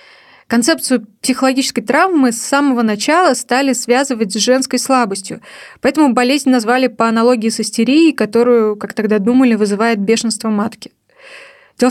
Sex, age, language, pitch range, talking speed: female, 20-39, Russian, 215-255 Hz, 130 wpm